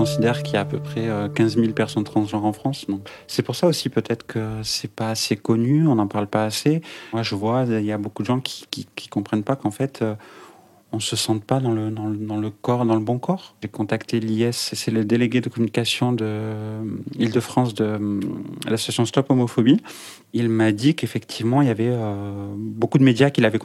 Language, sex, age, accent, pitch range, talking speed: French, male, 30-49, French, 110-130 Hz, 225 wpm